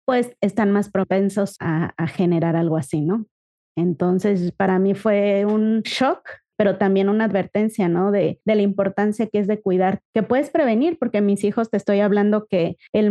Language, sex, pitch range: Spanish, female, 185-225 Hz